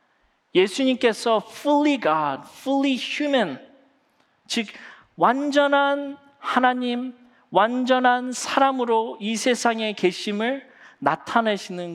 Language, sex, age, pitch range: Korean, male, 40-59, 185-260 Hz